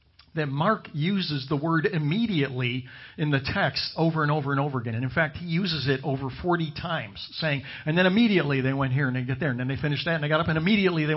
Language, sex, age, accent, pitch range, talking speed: English, male, 50-69, American, 125-165 Hz, 255 wpm